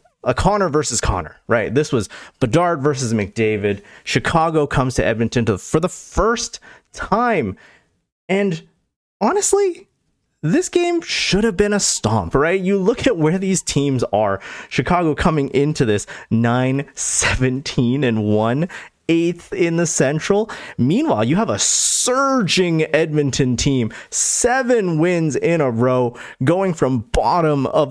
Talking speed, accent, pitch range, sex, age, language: 135 wpm, American, 115-175 Hz, male, 30-49, English